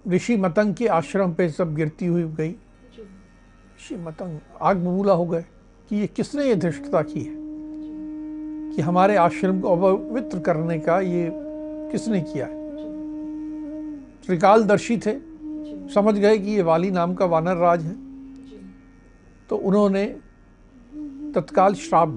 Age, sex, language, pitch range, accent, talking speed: 60-79, male, Hindi, 185-300 Hz, native, 135 wpm